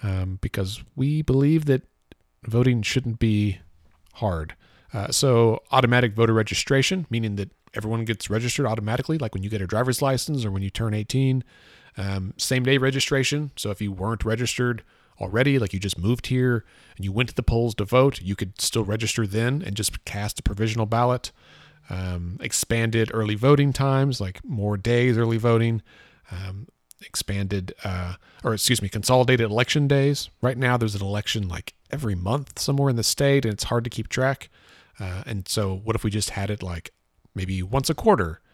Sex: male